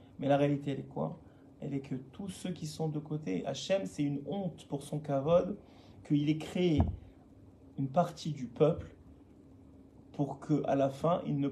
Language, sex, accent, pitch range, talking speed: French, male, French, 140-165 Hz, 180 wpm